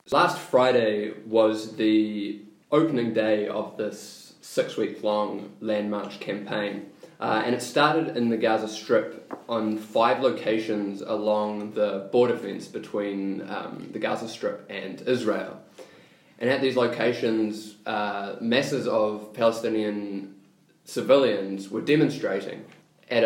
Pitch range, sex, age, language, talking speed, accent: 105-130 Hz, male, 20-39, English, 120 wpm, Australian